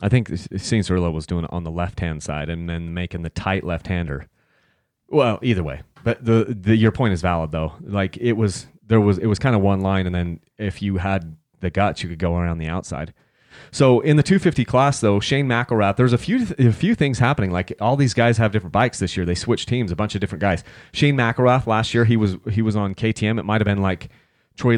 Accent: American